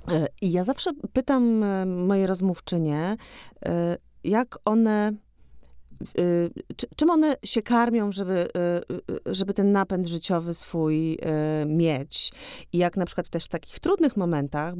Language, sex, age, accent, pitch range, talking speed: Polish, female, 30-49, native, 155-200 Hz, 115 wpm